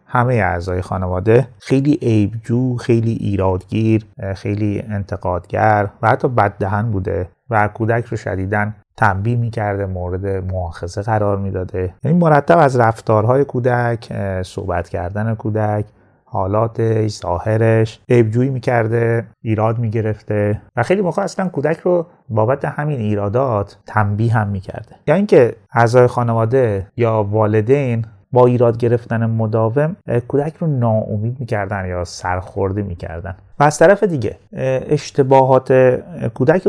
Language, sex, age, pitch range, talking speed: Persian, male, 30-49, 105-125 Hz, 115 wpm